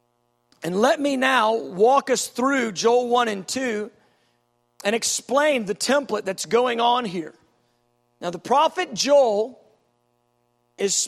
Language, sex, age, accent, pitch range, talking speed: English, male, 40-59, American, 180-275 Hz, 130 wpm